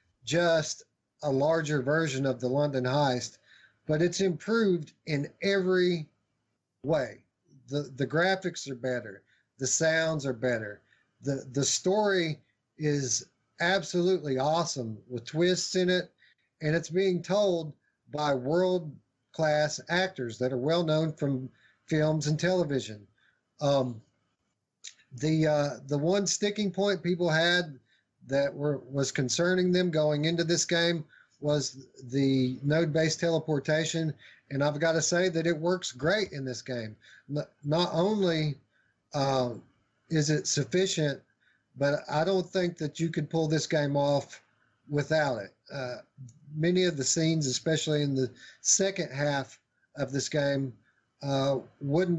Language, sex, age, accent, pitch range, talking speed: English, male, 40-59, American, 135-165 Hz, 135 wpm